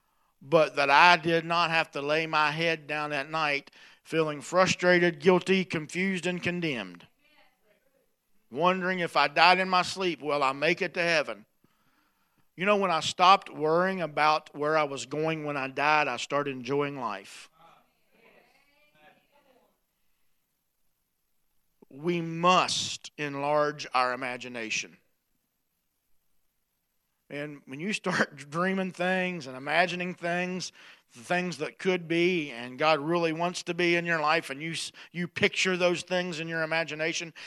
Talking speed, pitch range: 140 wpm, 150-180 Hz